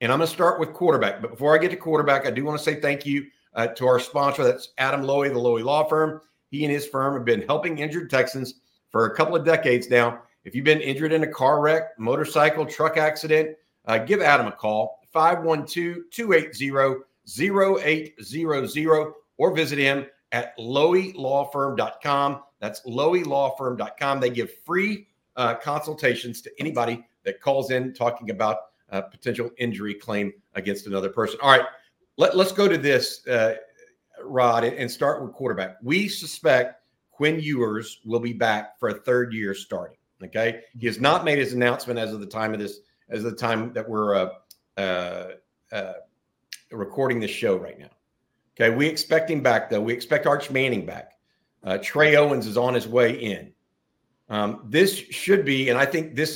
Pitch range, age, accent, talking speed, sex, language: 120-155 Hz, 50-69, American, 180 wpm, male, English